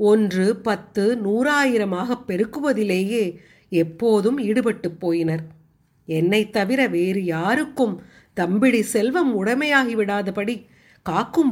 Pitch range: 170-235 Hz